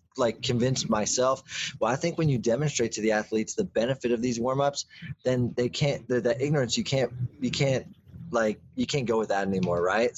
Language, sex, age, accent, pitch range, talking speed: English, male, 20-39, American, 115-140 Hz, 200 wpm